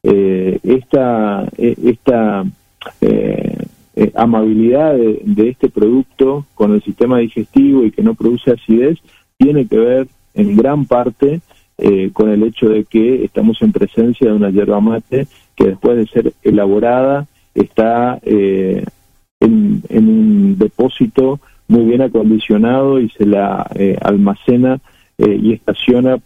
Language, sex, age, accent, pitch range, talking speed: Spanish, male, 40-59, Argentinian, 105-135 Hz, 140 wpm